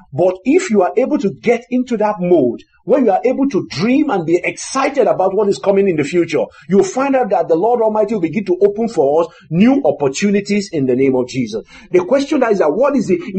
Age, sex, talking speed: 50-69, male, 240 wpm